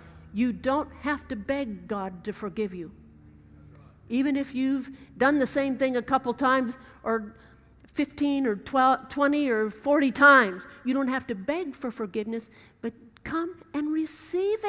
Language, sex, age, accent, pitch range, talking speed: English, female, 50-69, American, 225-325 Hz, 150 wpm